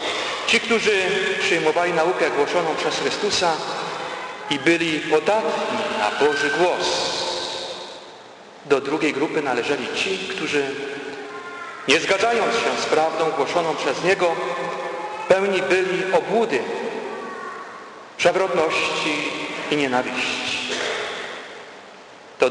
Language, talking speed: Polish, 90 wpm